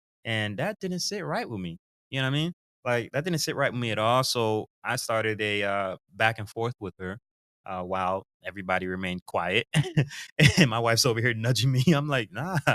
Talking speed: 215 wpm